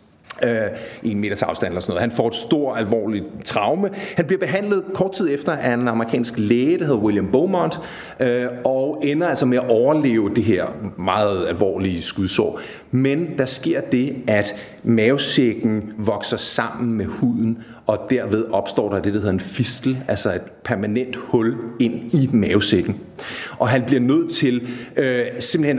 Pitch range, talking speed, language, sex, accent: 110-145 Hz, 165 wpm, Danish, male, native